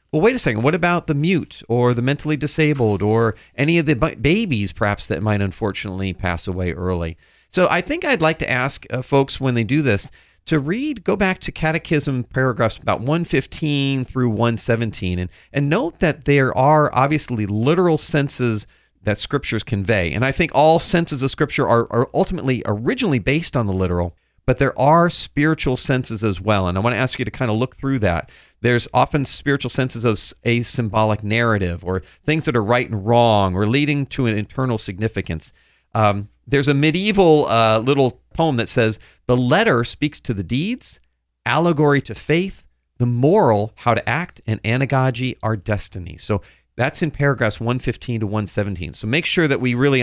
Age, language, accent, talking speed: 40-59, English, American, 185 wpm